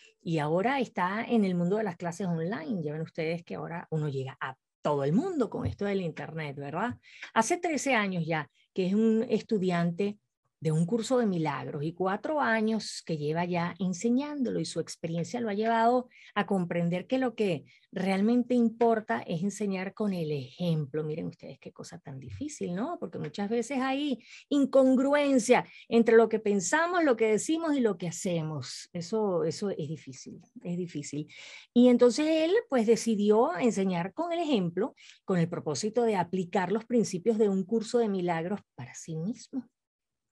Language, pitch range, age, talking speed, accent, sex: Spanish, 170-235 Hz, 30-49, 175 wpm, American, female